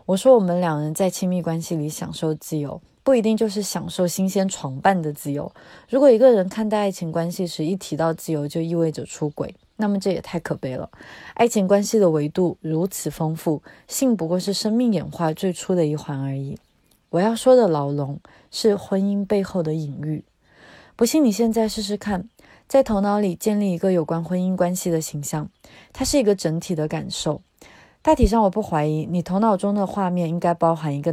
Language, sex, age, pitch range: Chinese, female, 20-39, 155-205 Hz